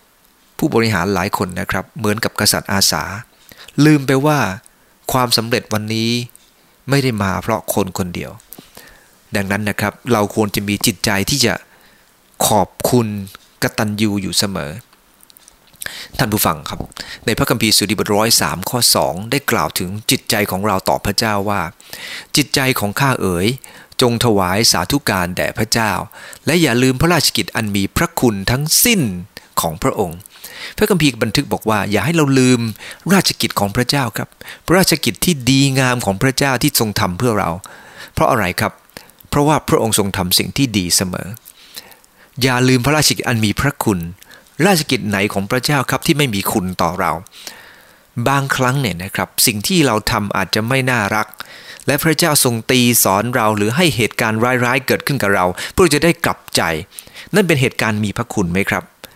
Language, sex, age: English, male, 30-49